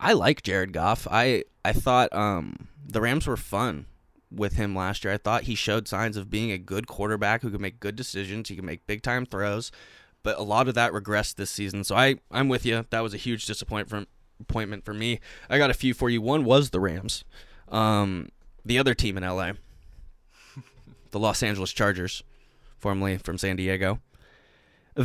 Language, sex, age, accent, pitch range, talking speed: English, male, 20-39, American, 95-110 Hz, 200 wpm